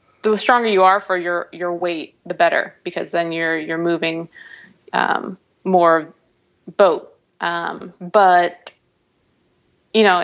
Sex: female